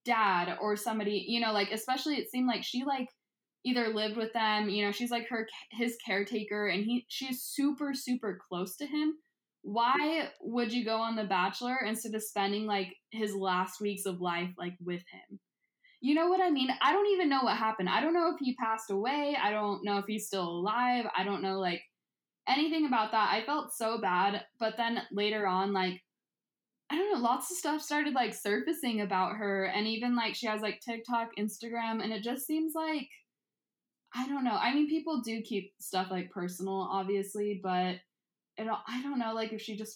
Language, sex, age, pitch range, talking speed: English, female, 10-29, 205-250 Hz, 205 wpm